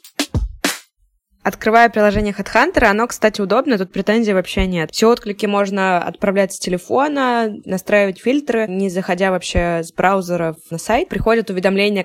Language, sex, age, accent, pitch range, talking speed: Russian, female, 20-39, native, 185-230 Hz, 135 wpm